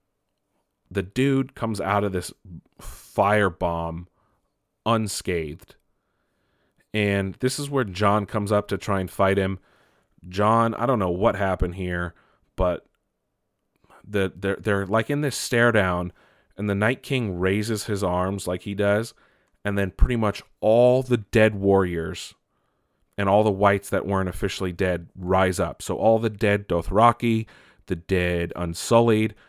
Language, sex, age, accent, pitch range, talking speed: English, male, 30-49, American, 95-110 Hz, 145 wpm